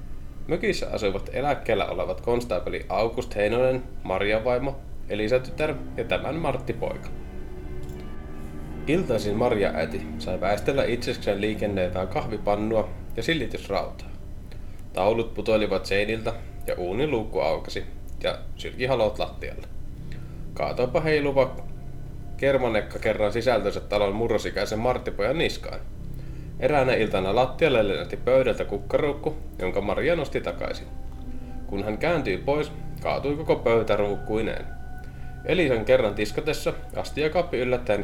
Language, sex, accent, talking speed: Finnish, male, native, 105 wpm